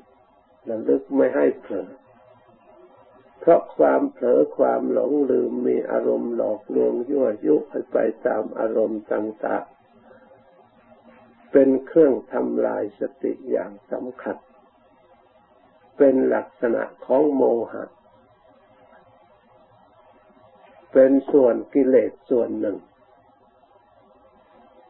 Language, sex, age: Thai, male, 60-79